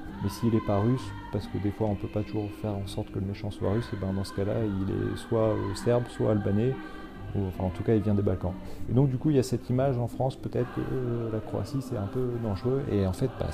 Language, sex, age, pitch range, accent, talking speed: French, male, 40-59, 90-110 Hz, French, 290 wpm